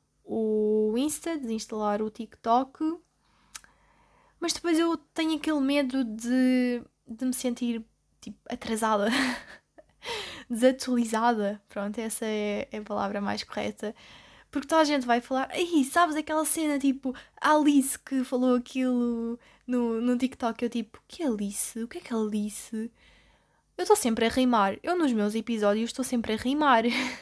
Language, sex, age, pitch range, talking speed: Portuguese, female, 10-29, 210-260 Hz, 140 wpm